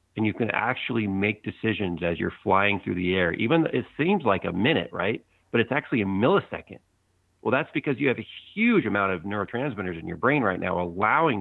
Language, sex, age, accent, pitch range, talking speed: English, male, 40-59, American, 90-110 Hz, 215 wpm